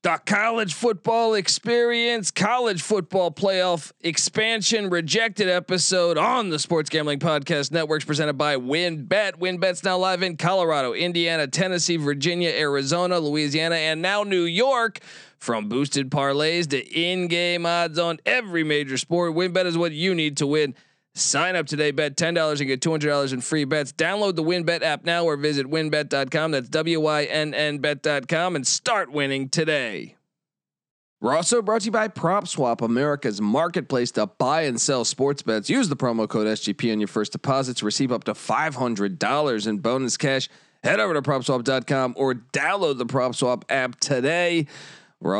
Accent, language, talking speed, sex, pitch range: American, English, 165 wpm, male, 135-175 Hz